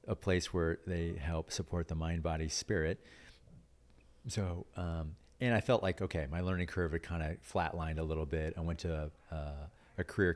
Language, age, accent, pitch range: English, 40-59, American, 75-95 Hz